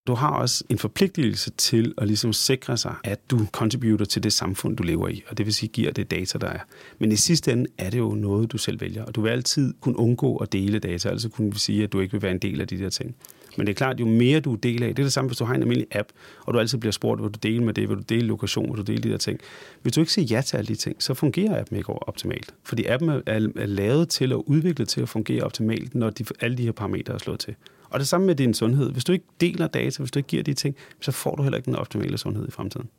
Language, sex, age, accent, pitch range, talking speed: Danish, male, 30-49, native, 105-130 Hz, 305 wpm